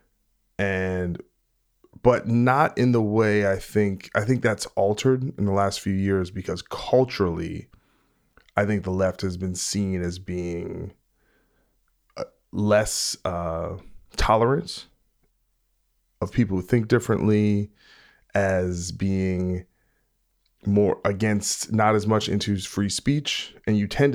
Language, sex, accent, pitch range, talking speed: English, male, American, 90-110 Hz, 120 wpm